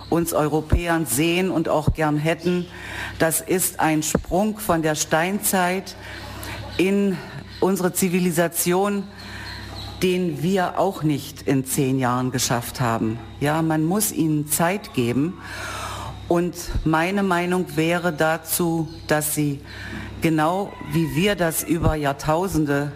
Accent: German